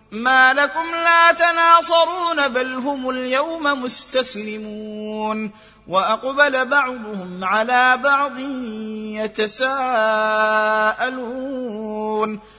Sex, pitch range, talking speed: male, 215-285 Hz, 60 wpm